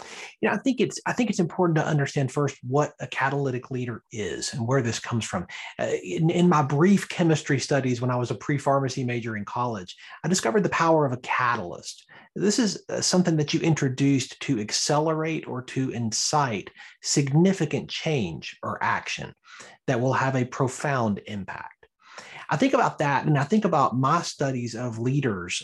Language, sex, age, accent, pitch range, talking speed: English, male, 30-49, American, 125-170 Hz, 180 wpm